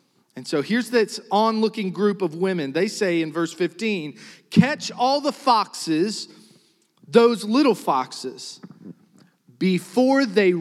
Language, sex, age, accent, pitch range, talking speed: English, male, 40-59, American, 130-195 Hz, 125 wpm